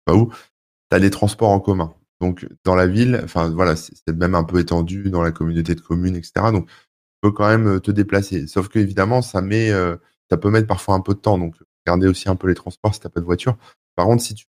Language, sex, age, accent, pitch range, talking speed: French, male, 20-39, French, 80-100 Hz, 255 wpm